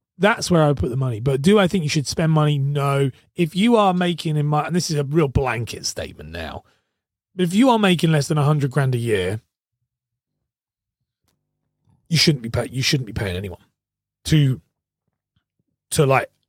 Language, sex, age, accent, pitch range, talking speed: English, male, 30-49, British, 110-150 Hz, 195 wpm